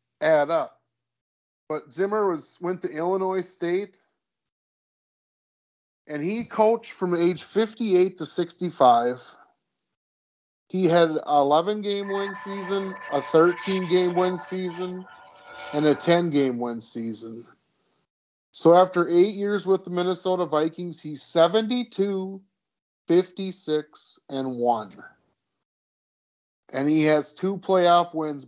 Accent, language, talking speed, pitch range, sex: American, English, 110 wpm, 135-180 Hz, male